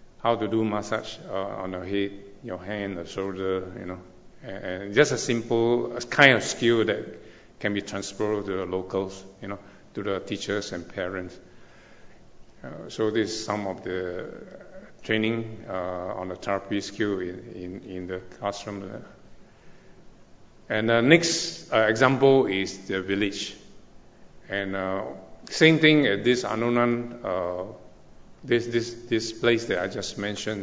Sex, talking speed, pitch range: male, 150 wpm, 95-120 Hz